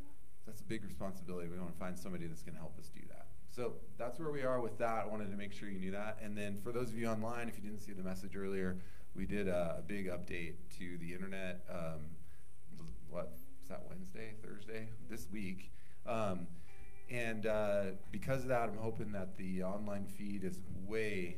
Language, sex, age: English, male, 30-49